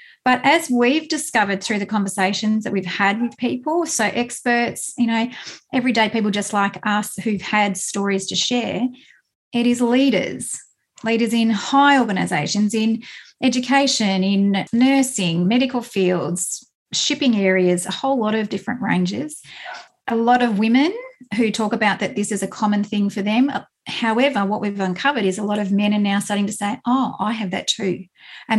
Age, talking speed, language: 30-49, 170 wpm, English